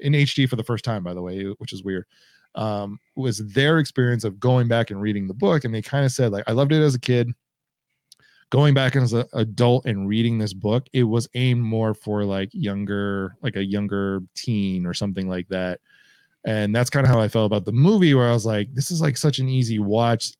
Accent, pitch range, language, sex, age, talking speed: American, 105-135 Hz, English, male, 20-39, 235 wpm